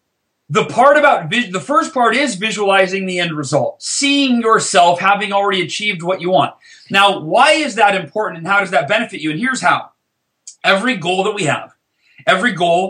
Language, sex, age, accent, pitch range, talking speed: English, male, 30-49, American, 185-250 Hz, 185 wpm